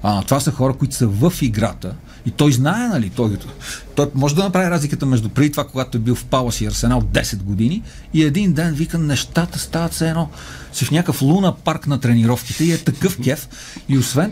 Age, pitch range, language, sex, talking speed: 40-59, 115-160 Hz, Bulgarian, male, 215 wpm